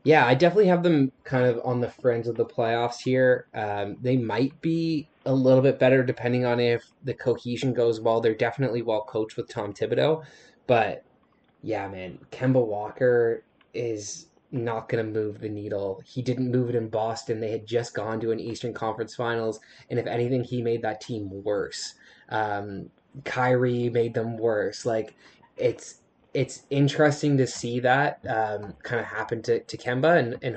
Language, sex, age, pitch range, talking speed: English, male, 20-39, 115-130 Hz, 180 wpm